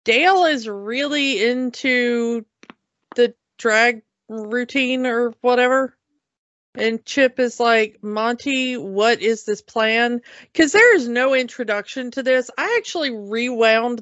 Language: English